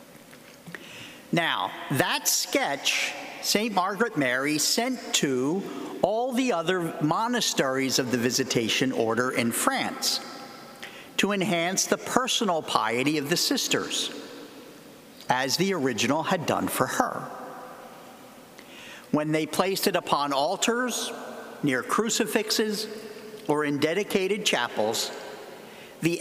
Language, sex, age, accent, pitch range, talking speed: English, male, 50-69, American, 165-245 Hz, 105 wpm